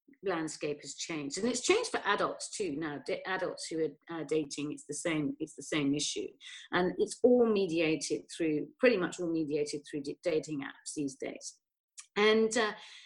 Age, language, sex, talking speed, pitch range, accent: 40-59, English, female, 175 wpm, 165-250 Hz, British